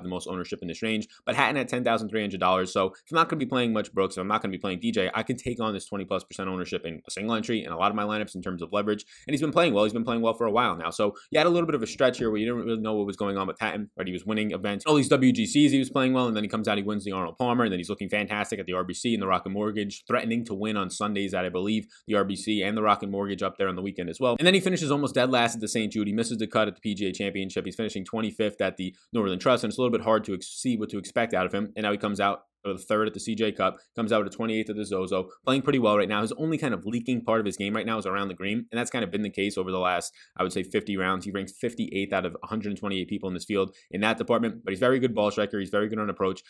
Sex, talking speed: male, 335 wpm